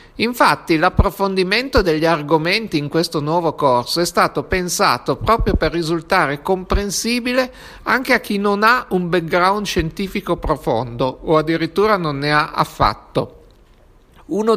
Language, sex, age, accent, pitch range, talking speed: Italian, male, 50-69, native, 155-205 Hz, 130 wpm